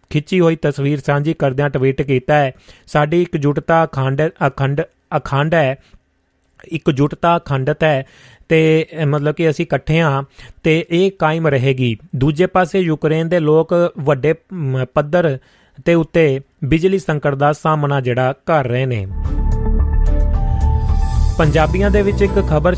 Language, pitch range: Punjabi, 135-160 Hz